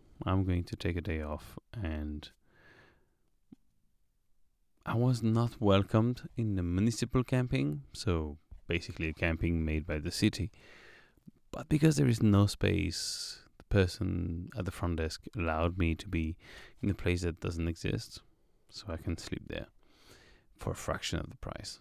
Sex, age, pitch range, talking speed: male, 30-49, 85-115 Hz, 155 wpm